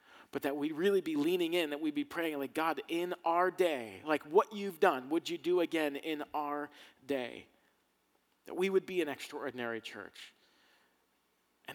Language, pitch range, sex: English, 125-155 Hz, male